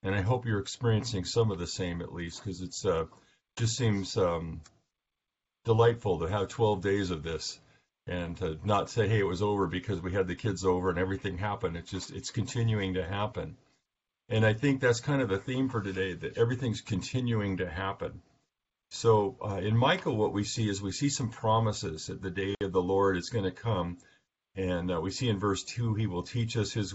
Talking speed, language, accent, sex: 210 wpm, English, American, male